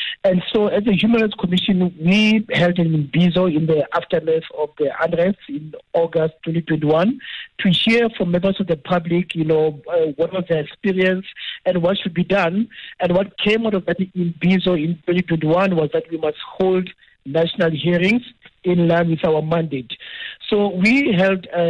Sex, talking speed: male, 175 wpm